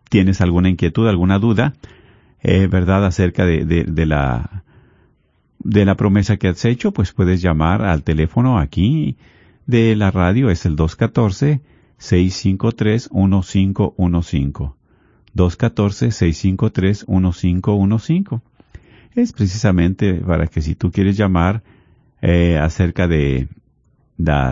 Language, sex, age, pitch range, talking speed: Spanish, male, 50-69, 85-110 Hz, 105 wpm